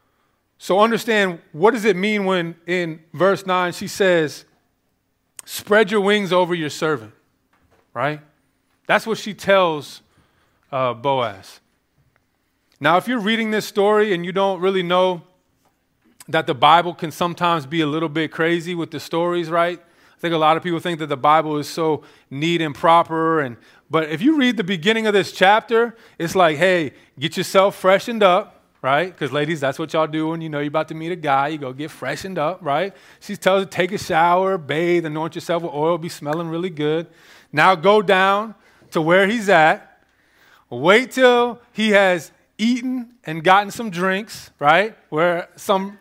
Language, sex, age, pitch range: English, male, 30-49, 160-200 Hz